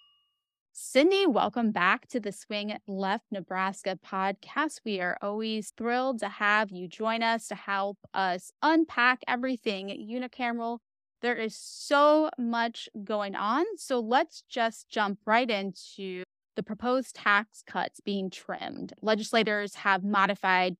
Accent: American